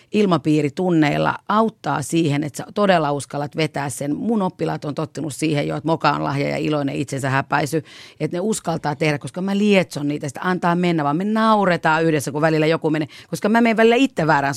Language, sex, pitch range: Finnish, female, 145-190 Hz